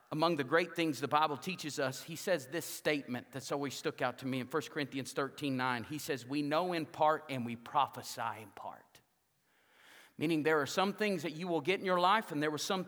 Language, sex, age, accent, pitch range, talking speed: English, male, 40-59, American, 145-190 Hz, 230 wpm